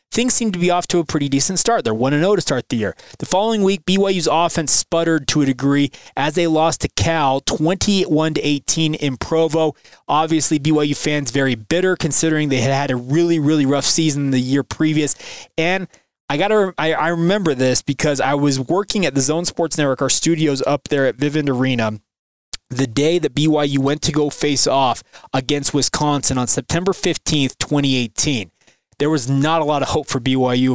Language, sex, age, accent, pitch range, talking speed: English, male, 20-39, American, 140-170 Hz, 185 wpm